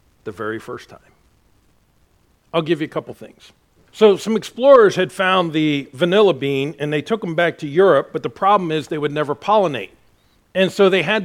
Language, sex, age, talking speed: English, male, 50-69, 200 wpm